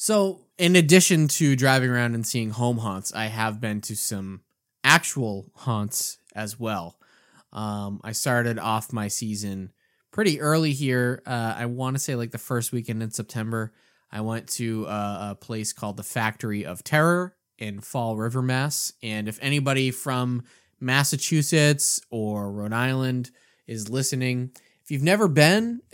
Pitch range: 110-165 Hz